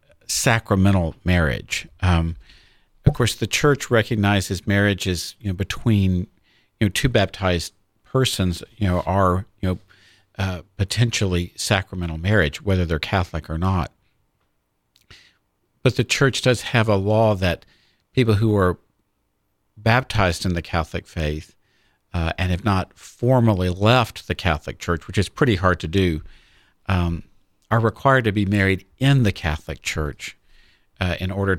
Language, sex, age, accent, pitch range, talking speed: English, male, 50-69, American, 85-110 Hz, 140 wpm